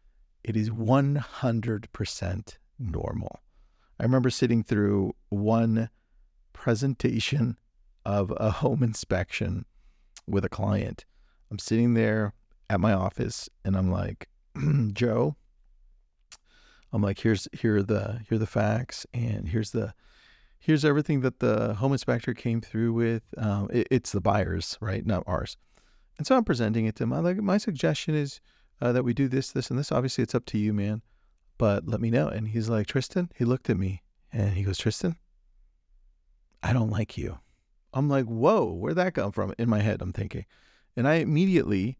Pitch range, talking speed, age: 100-135 Hz, 170 wpm, 40-59